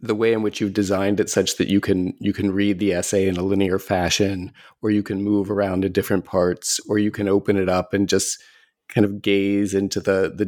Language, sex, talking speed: English, male, 240 wpm